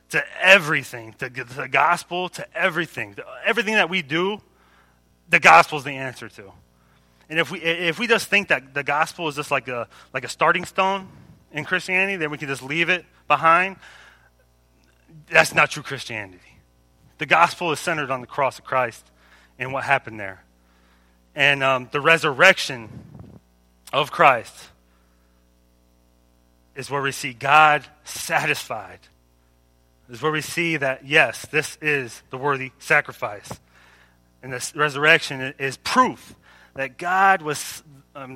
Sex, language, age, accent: male, English, 30-49, American